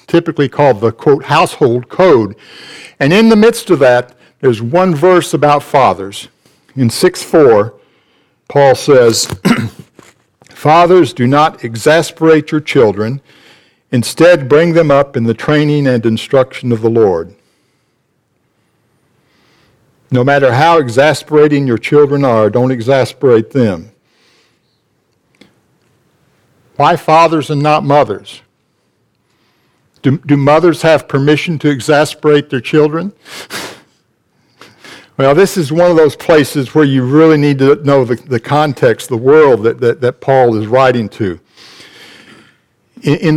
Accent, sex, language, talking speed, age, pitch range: American, male, English, 125 wpm, 60-79, 125-155 Hz